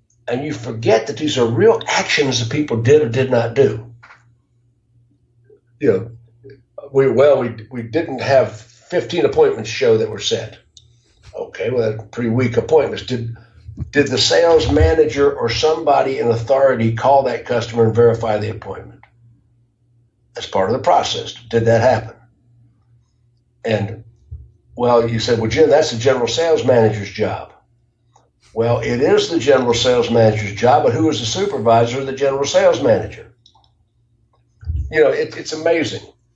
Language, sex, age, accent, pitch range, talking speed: English, male, 60-79, American, 115-140 Hz, 155 wpm